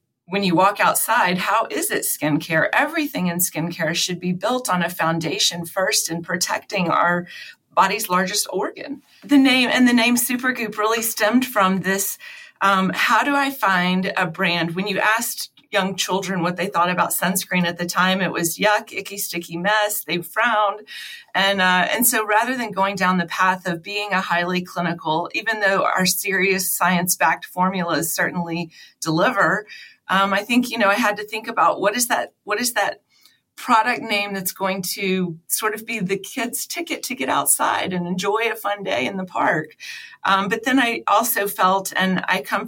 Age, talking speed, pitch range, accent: 30-49, 185 wpm, 175-215 Hz, American